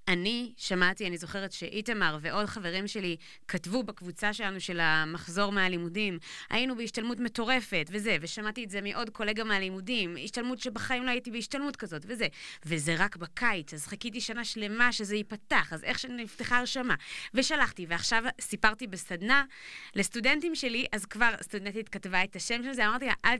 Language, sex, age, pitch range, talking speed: Hebrew, female, 20-39, 170-225 Hz, 155 wpm